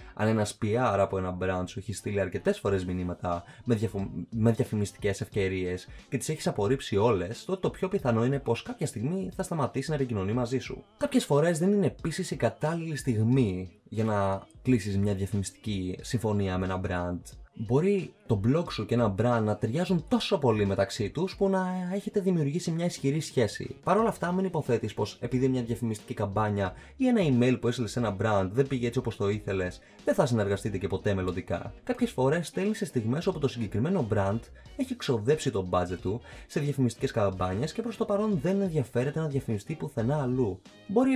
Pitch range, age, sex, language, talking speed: 105-165 Hz, 20-39, male, Greek, 190 wpm